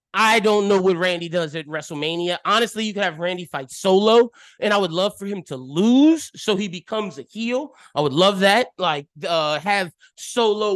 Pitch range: 175-230 Hz